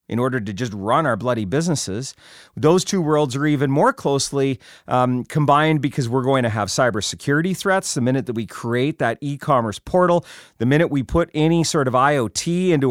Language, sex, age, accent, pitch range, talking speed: English, male, 40-59, American, 125-165 Hz, 190 wpm